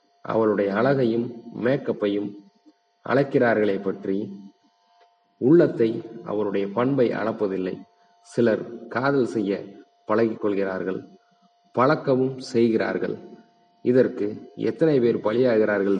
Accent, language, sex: native, Tamil, male